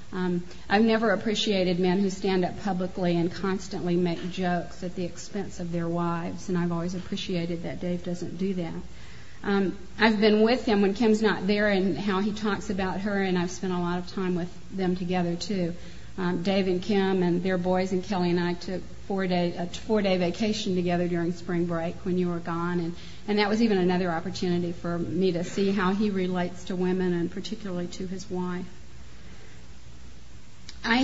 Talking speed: 195 wpm